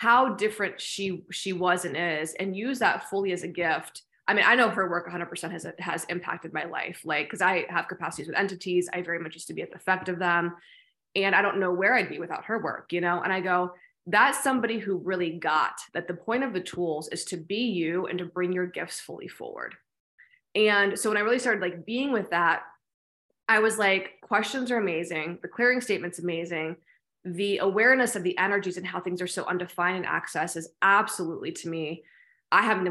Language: English